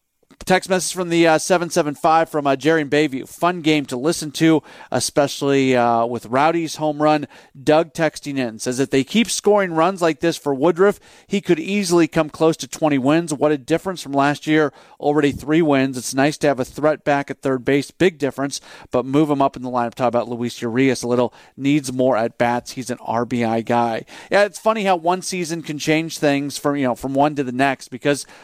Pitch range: 130-160 Hz